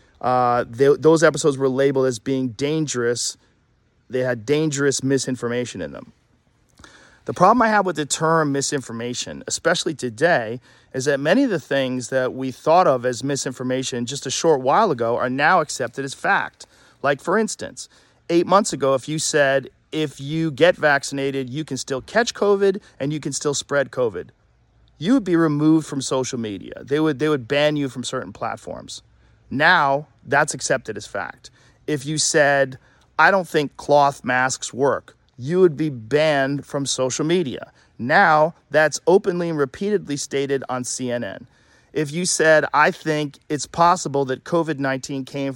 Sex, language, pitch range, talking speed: male, English, 130-160 Hz, 165 wpm